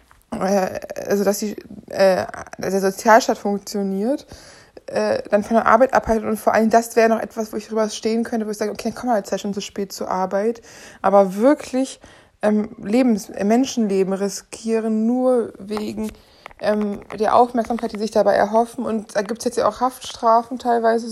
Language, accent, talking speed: German, German, 175 wpm